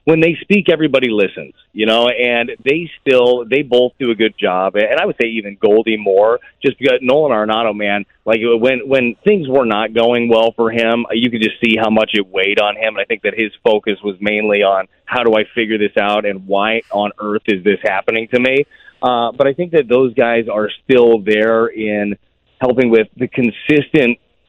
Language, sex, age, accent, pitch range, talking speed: English, male, 30-49, American, 105-125 Hz, 215 wpm